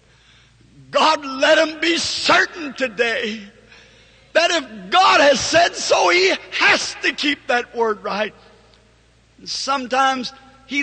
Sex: male